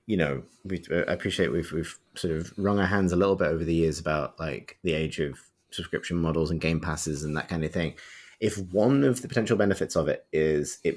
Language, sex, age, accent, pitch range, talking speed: English, male, 20-39, British, 85-105 Hz, 230 wpm